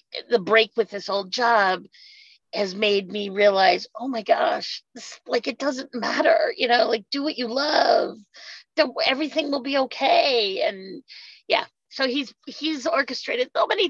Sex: female